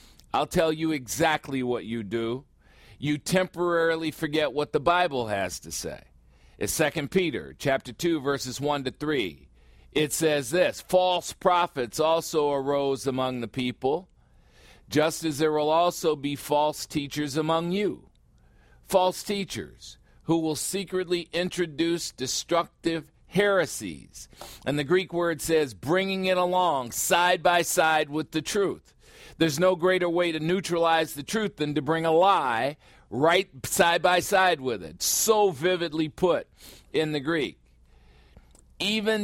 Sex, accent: male, American